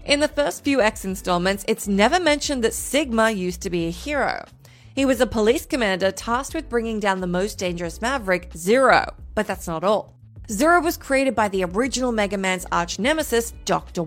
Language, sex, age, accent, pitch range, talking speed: English, female, 30-49, American, 185-275 Hz, 190 wpm